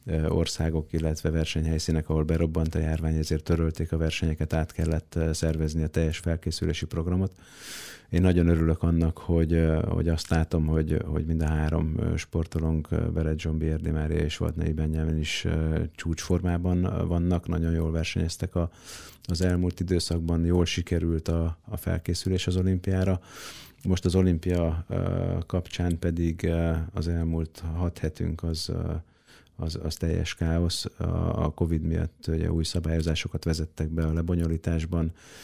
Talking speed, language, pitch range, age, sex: 130 wpm, Hungarian, 80-85 Hz, 30-49, male